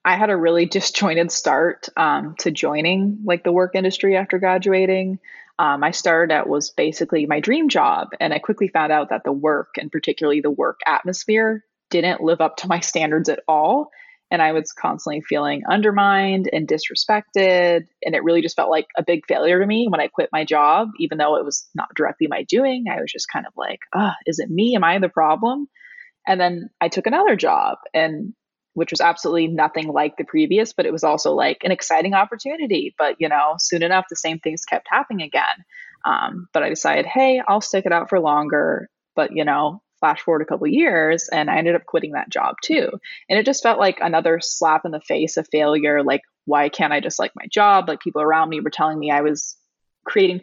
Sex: female